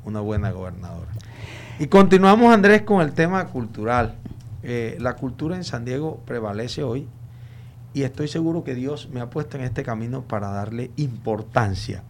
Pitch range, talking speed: 115-155 Hz, 160 wpm